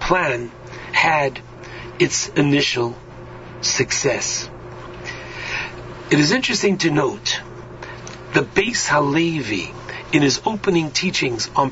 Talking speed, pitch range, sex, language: 90 wpm, 135-185 Hz, male, English